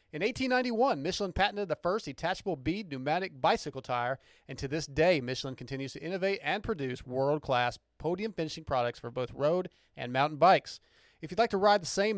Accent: American